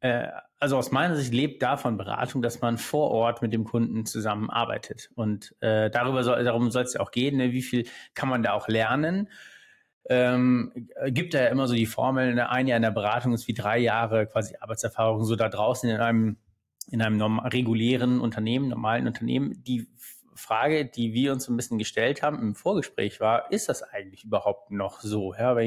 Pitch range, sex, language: 110-125 Hz, male, German